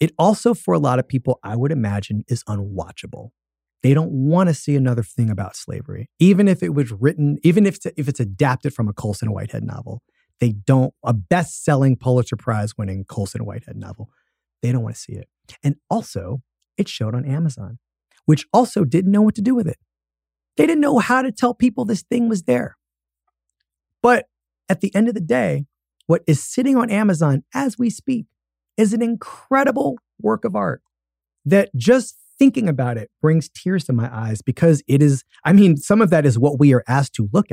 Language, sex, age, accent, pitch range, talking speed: English, male, 30-49, American, 115-175 Hz, 195 wpm